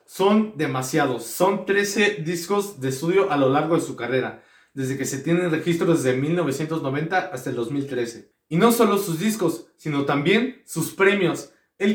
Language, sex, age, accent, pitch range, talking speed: Spanish, male, 40-59, Mexican, 145-195 Hz, 165 wpm